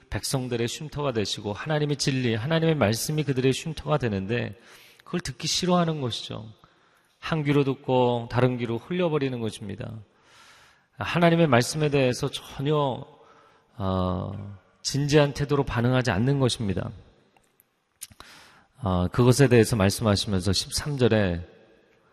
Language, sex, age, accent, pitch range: Korean, male, 30-49, native, 105-145 Hz